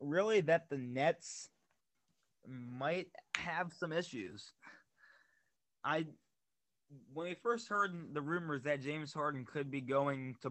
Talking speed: 125 wpm